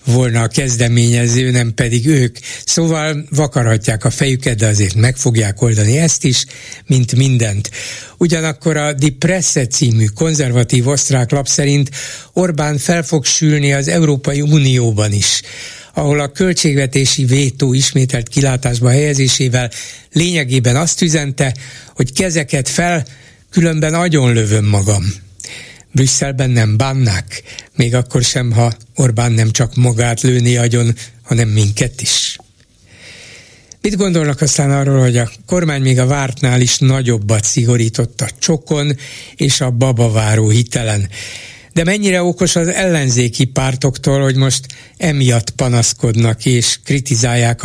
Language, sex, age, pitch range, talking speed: Hungarian, male, 60-79, 120-145 Hz, 125 wpm